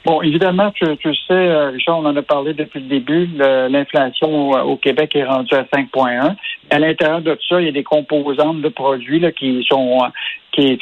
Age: 60-79